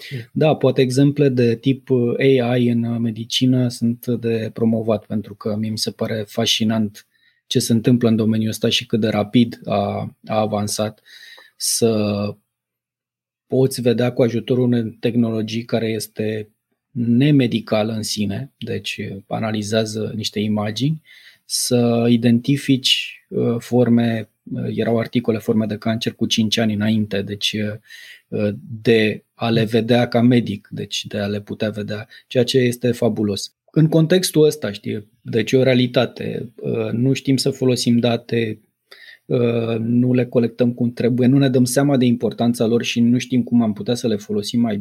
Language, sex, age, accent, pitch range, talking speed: Romanian, male, 20-39, native, 110-125 Hz, 145 wpm